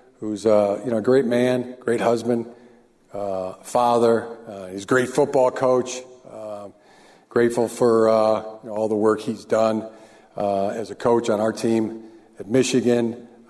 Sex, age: male, 50-69